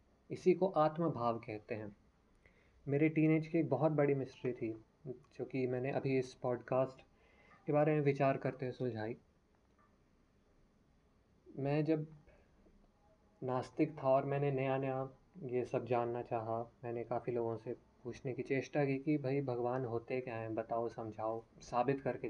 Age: 20-39